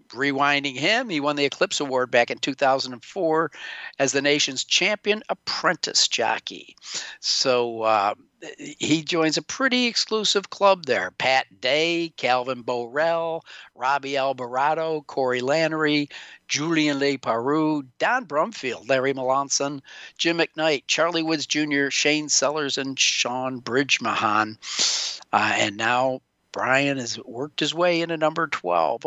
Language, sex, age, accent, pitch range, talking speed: English, male, 50-69, American, 130-160 Hz, 125 wpm